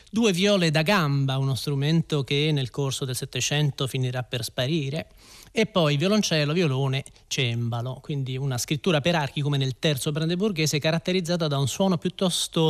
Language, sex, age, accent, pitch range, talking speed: Italian, male, 30-49, native, 130-165 Hz, 155 wpm